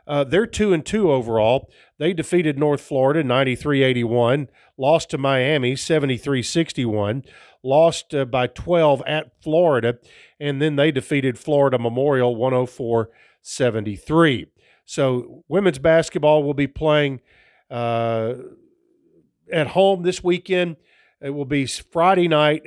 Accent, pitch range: American, 130-165 Hz